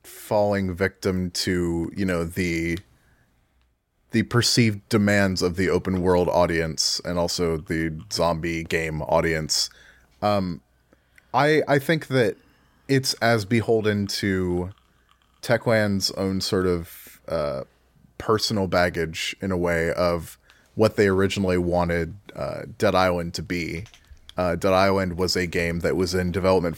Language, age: English, 30-49